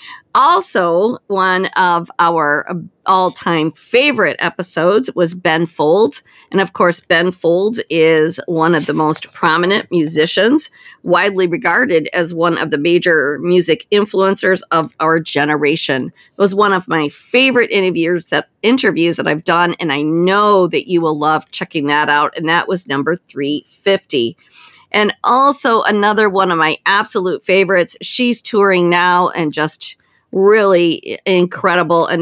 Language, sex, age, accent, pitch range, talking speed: English, female, 50-69, American, 160-195 Hz, 140 wpm